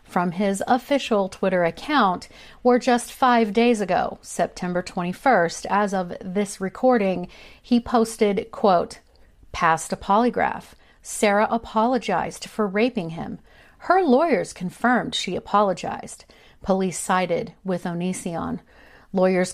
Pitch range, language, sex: 185-235 Hz, English, female